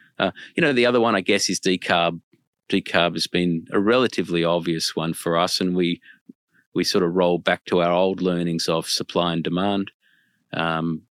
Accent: Australian